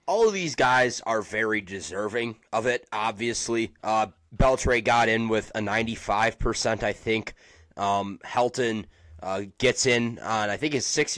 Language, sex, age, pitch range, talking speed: English, male, 20-39, 110-140 Hz, 155 wpm